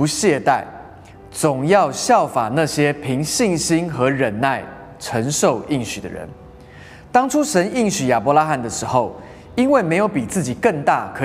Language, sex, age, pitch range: Chinese, male, 20-39, 120-175 Hz